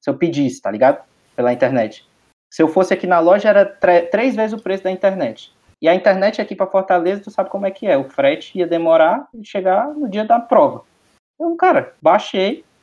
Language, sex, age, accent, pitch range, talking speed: Portuguese, male, 20-39, Brazilian, 135-225 Hz, 215 wpm